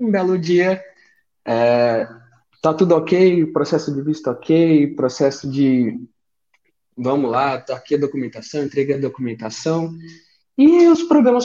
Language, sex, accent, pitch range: Portuguese, male, Brazilian, 140-210 Hz